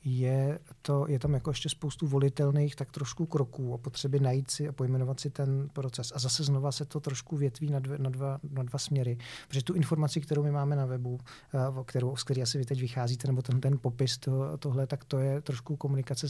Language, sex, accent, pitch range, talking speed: Czech, male, native, 125-140 Hz, 220 wpm